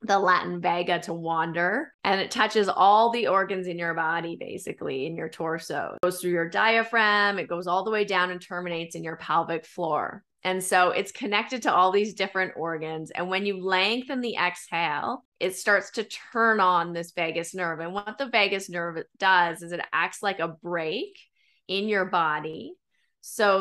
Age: 20-39